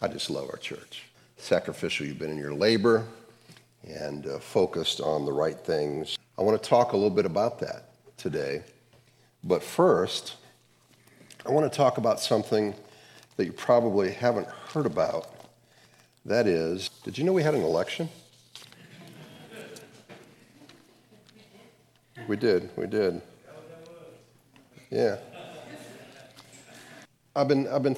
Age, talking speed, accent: 50-69, 130 wpm, American